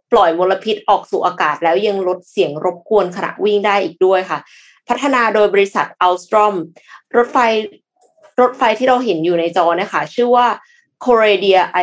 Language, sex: Thai, female